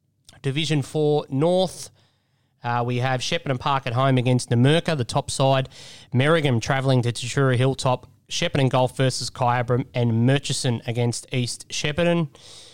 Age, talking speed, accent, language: 20-39, 135 wpm, Australian, English